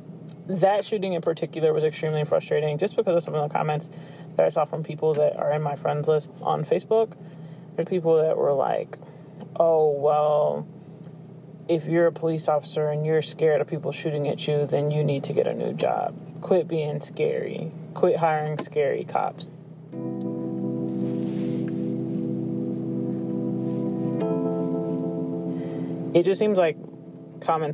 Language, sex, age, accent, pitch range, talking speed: English, male, 30-49, American, 150-170 Hz, 145 wpm